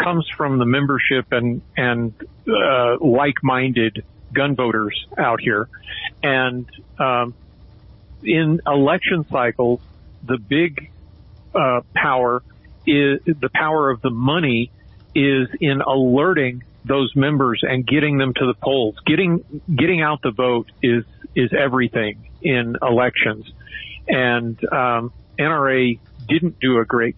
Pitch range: 115-145 Hz